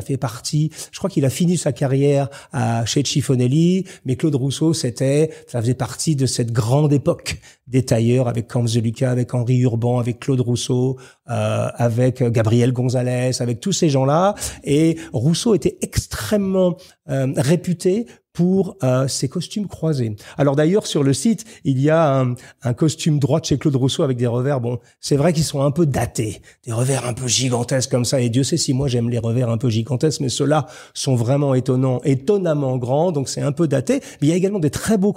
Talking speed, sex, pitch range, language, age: 200 wpm, male, 130-170 Hz, French, 40-59